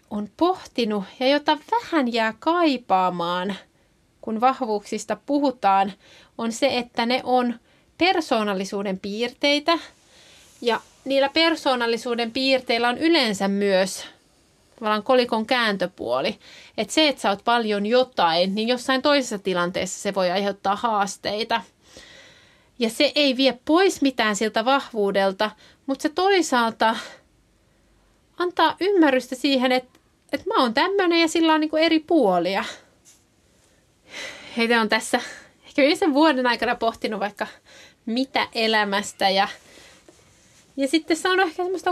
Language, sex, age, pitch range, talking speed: Finnish, female, 30-49, 205-285 Hz, 115 wpm